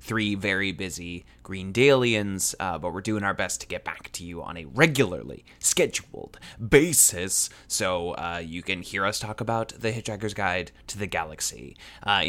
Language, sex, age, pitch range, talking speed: English, male, 20-39, 95-120 Hz, 170 wpm